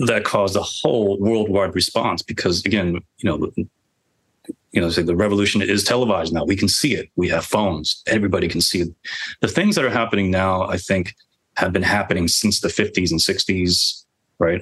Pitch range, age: 85-105 Hz, 30-49